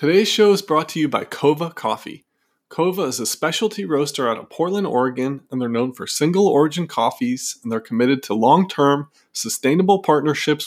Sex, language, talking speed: male, English, 185 wpm